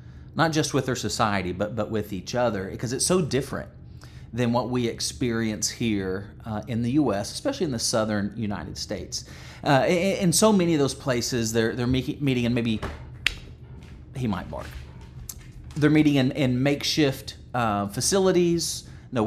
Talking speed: 160 wpm